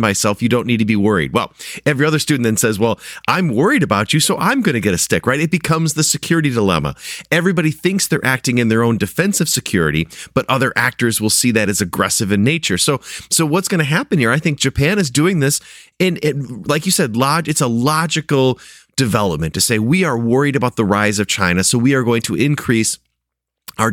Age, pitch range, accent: 30-49, 115-155 Hz, American